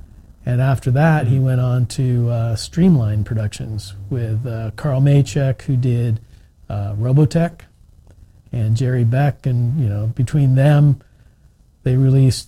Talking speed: 135 wpm